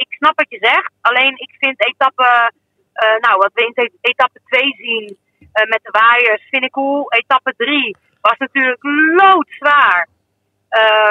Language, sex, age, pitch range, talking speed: Dutch, female, 30-49, 225-285 Hz, 165 wpm